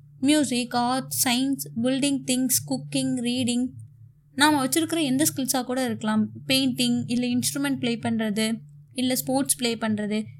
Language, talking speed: Tamil, 125 wpm